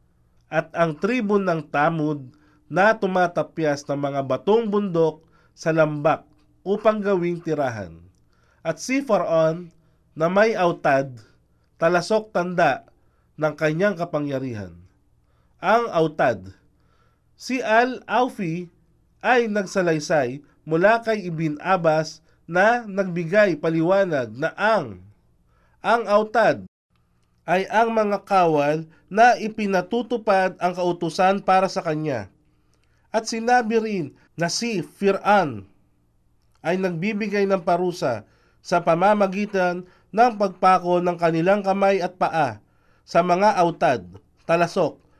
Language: Filipino